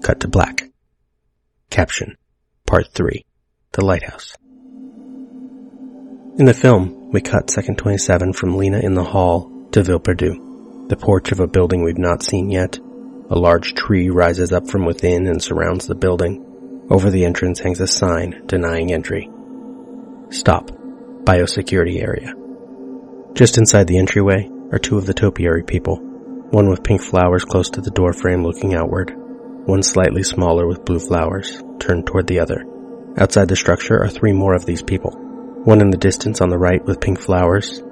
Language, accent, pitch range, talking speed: English, American, 90-130 Hz, 160 wpm